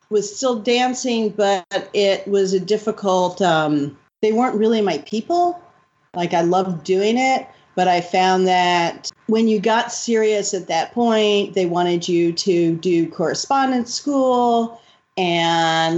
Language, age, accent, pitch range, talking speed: English, 40-59, American, 175-215 Hz, 145 wpm